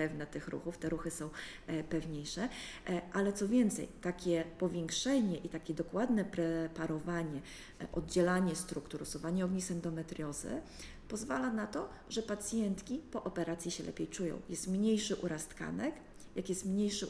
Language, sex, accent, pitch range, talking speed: Polish, female, native, 165-190 Hz, 135 wpm